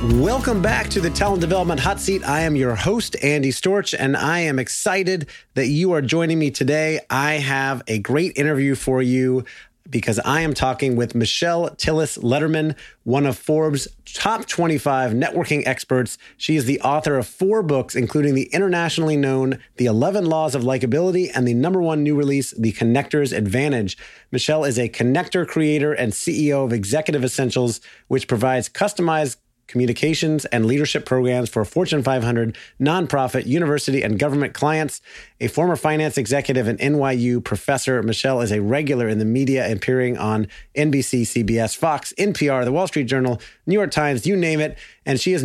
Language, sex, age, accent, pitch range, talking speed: English, male, 30-49, American, 125-155 Hz, 170 wpm